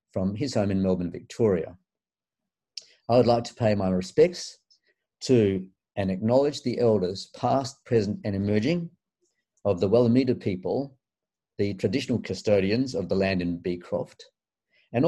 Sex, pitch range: male, 100-130 Hz